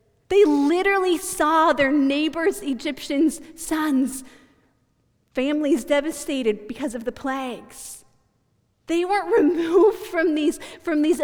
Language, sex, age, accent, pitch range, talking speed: English, female, 40-59, American, 230-300 Hz, 100 wpm